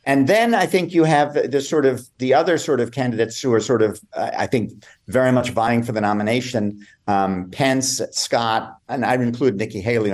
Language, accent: English, American